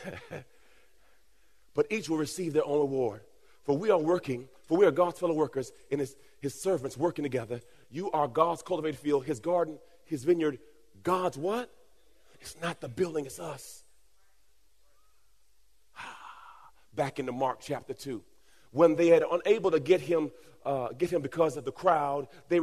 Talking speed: 160 wpm